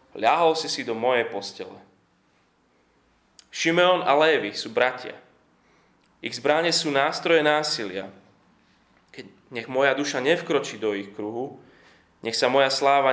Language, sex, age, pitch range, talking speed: Slovak, male, 20-39, 110-145 Hz, 130 wpm